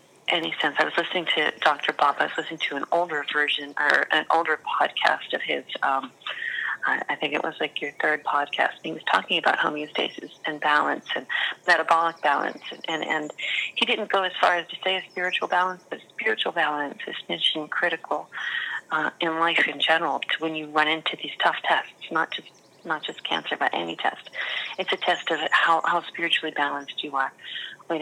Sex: female